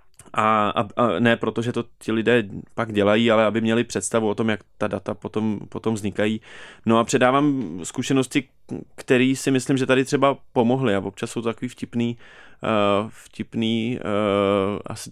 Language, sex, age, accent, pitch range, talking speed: Czech, male, 20-39, native, 105-120 Hz, 160 wpm